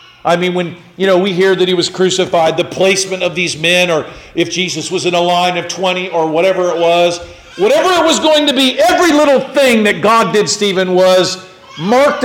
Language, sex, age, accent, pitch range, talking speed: English, male, 50-69, American, 170-225 Hz, 215 wpm